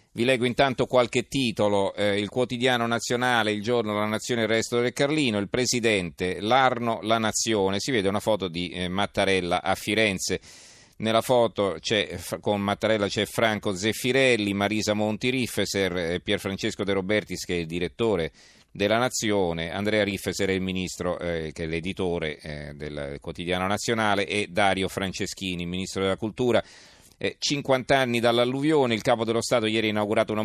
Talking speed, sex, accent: 150 wpm, male, native